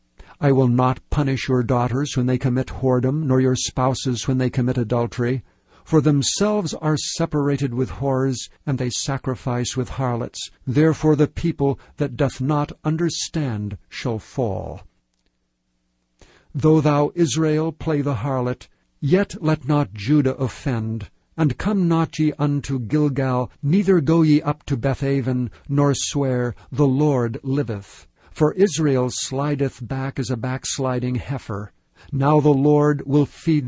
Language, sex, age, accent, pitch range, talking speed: English, male, 60-79, American, 120-150 Hz, 140 wpm